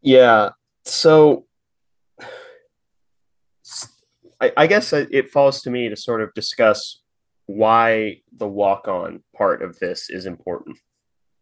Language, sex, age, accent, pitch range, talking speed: English, male, 30-49, American, 110-165 Hz, 110 wpm